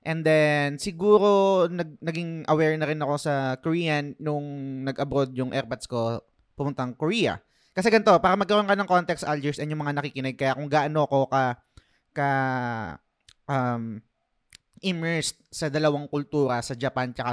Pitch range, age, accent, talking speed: 125-150 Hz, 20-39, native, 155 wpm